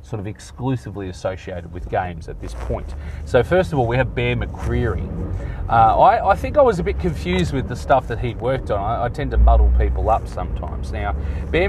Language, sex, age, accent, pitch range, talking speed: English, male, 30-49, Australian, 75-105 Hz, 220 wpm